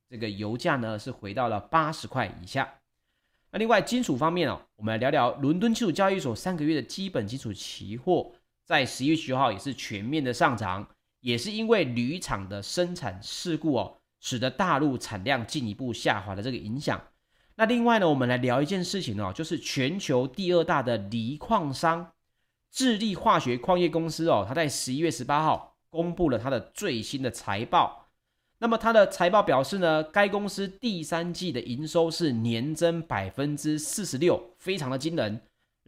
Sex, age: male, 30-49